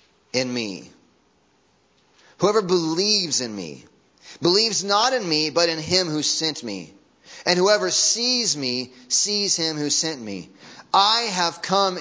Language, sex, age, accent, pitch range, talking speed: English, male, 30-49, American, 145-195 Hz, 140 wpm